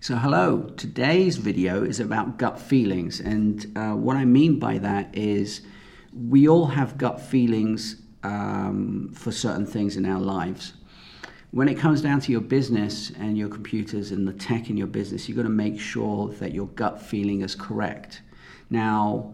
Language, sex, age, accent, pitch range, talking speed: English, male, 40-59, British, 105-125 Hz, 170 wpm